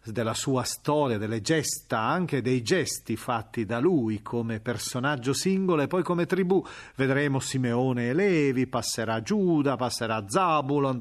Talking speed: 140 wpm